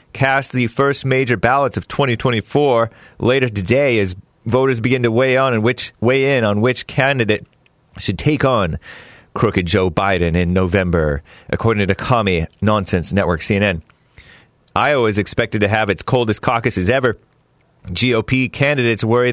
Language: English